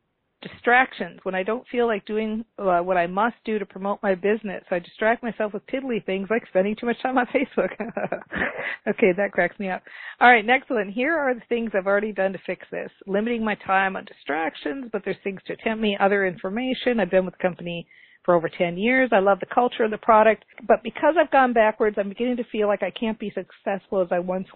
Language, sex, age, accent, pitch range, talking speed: English, female, 50-69, American, 185-235 Hz, 230 wpm